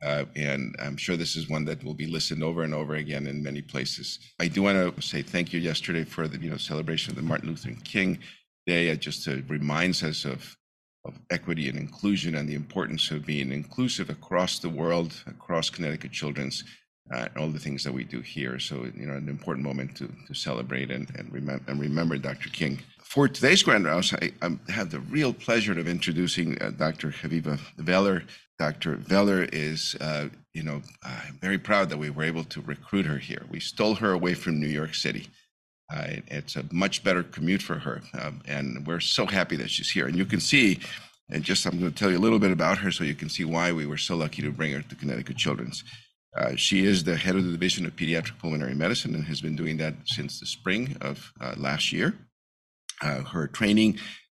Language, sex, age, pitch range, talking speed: English, male, 50-69, 75-85 Hz, 220 wpm